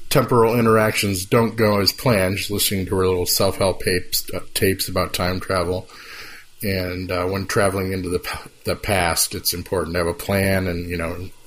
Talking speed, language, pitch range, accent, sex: 190 wpm, English, 95-115 Hz, American, male